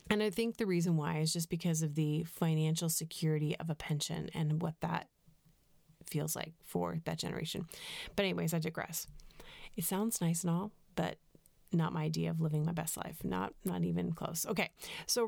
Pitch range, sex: 160-195 Hz, female